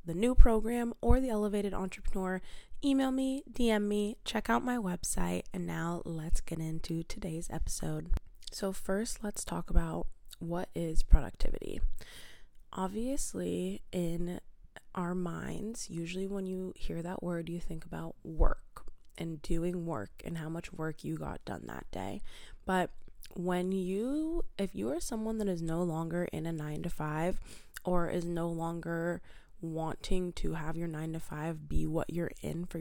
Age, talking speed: 20-39, 160 wpm